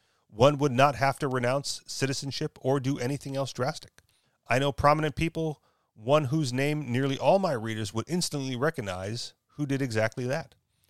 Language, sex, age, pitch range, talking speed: English, male, 30-49, 115-145 Hz, 165 wpm